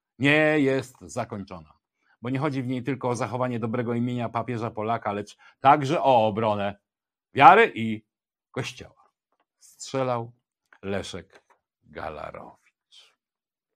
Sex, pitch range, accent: male, 100-135 Hz, native